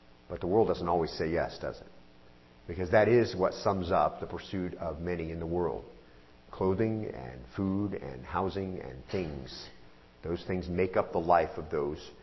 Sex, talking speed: male, 180 wpm